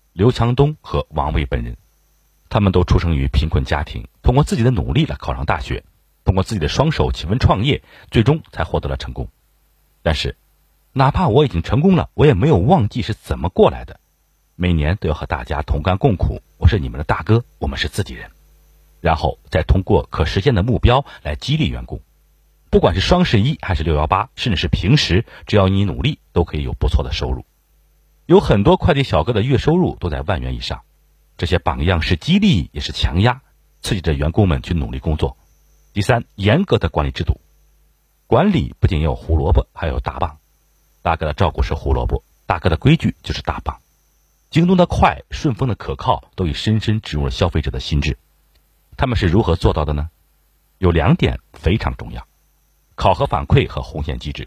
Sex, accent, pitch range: male, native, 75-95 Hz